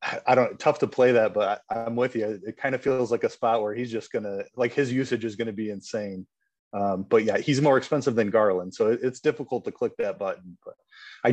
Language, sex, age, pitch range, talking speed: English, male, 30-49, 105-130 Hz, 240 wpm